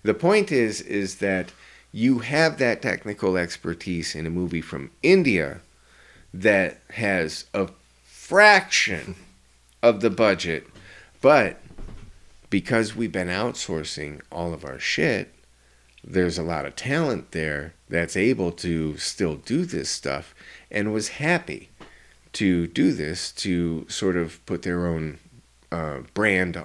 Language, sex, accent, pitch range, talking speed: English, male, American, 75-95 Hz, 130 wpm